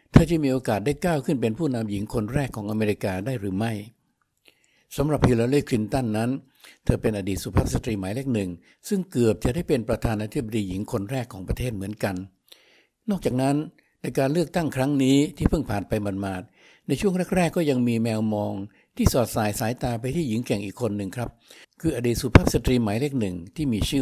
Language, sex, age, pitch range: Thai, male, 60-79, 110-140 Hz